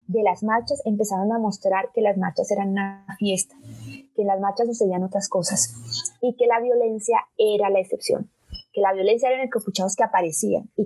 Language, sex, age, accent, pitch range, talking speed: Spanish, female, 20-39, Colombian, 195-265 Hz, 195 wpm